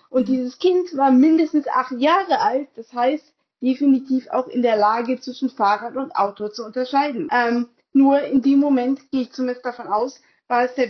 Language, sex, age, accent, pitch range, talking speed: German, female, 20-39, German, 240-280 Hz, 185 wpm